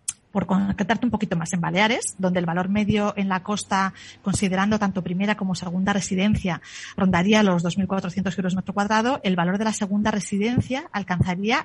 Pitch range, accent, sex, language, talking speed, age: 180-230 Hz, Spanish, female, Spanish, 170 wpm, 40-59